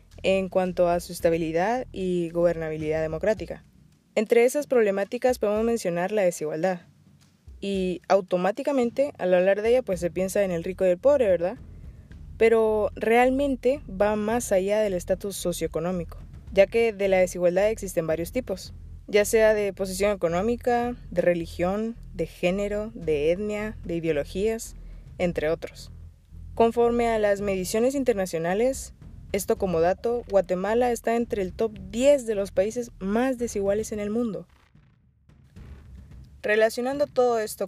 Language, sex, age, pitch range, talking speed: Spanish, female, 20-39, 180-230 Hz, 140 wpm